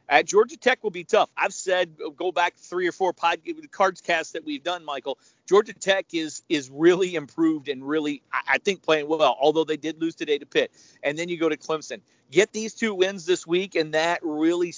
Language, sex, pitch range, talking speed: English, male, 145-185 Hz, 225 wpm